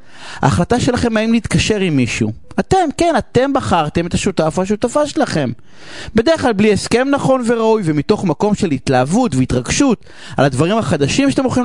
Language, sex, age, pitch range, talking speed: Hebrew, male, 30-49, 150-245 Hz, 155 wpm